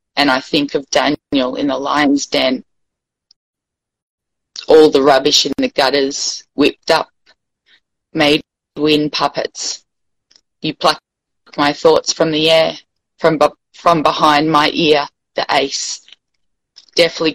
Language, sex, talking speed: English, female, 125 wpm